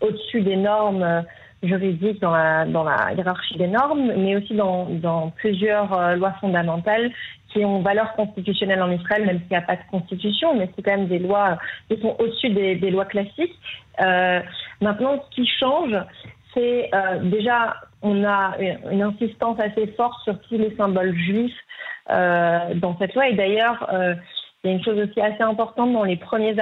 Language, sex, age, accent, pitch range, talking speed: Hebrew, female, 30-49, French, 190-230 Hz, 185 wpm